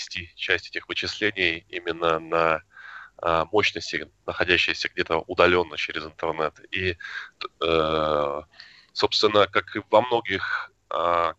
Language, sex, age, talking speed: Russian, male, 20-39, 105 wpm